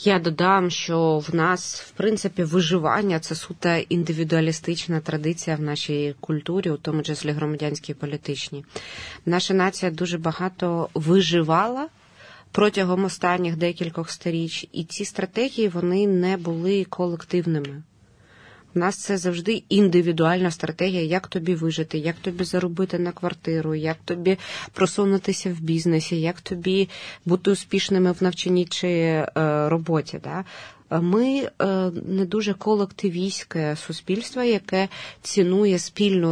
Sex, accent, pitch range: female, native, 160-190 Hz